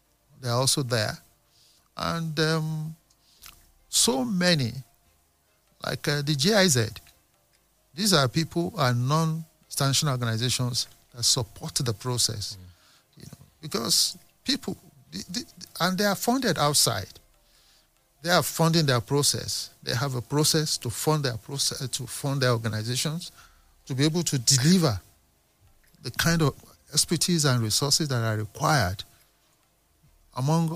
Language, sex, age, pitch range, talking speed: English, male, 50-69, 115-145 Hz, 130 wpm